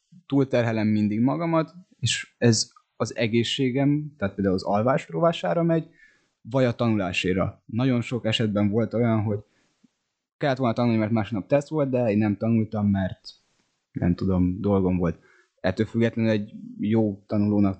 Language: Hungarian